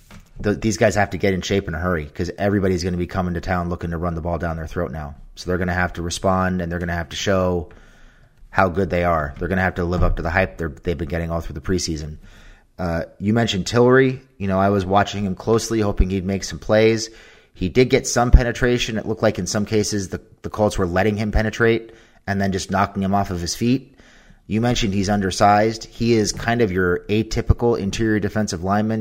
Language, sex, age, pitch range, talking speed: English, male, 30-49, 90-105 Hz, 245 wpm